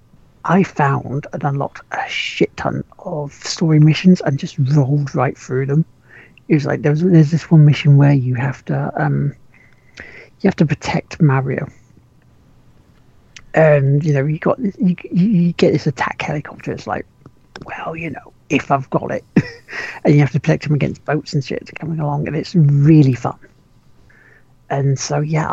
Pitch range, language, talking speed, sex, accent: 140-170 Hz, English, 175 wpm, male, British